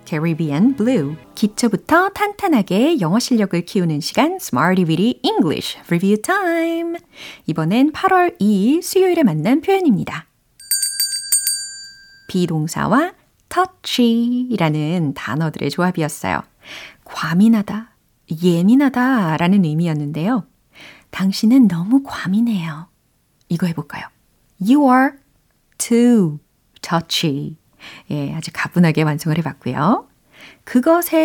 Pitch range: 165-275 Hz